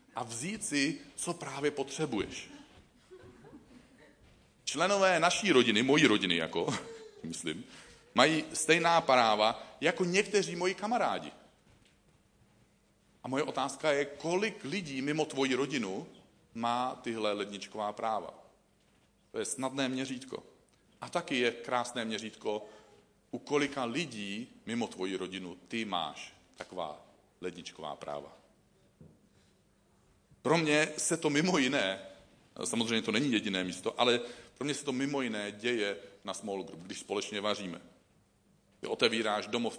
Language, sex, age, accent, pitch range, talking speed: Czech, male, 40-59, native, 100-155 Hz, 120 wpm